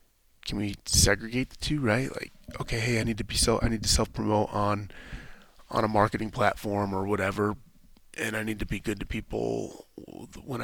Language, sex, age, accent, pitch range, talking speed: English, male, 30-49, American, 95-115 Hz, 190 wpm